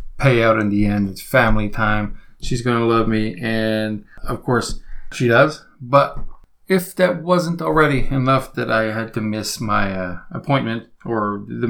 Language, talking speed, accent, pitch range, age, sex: English, 175 wpm, American, 110-130 Hz, 40-59, male